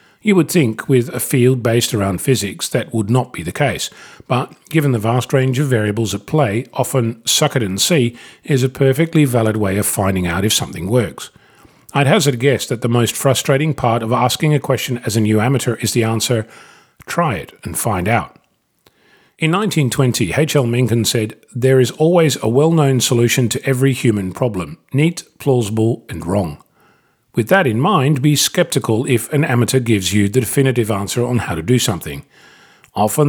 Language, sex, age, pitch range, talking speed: English, male, 40-59, 110-135 Hz, 190 wpm